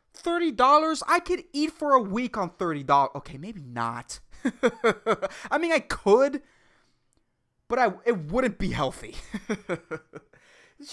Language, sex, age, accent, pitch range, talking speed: English, male, 20-39, American, 155-260 Hz, 120 wpm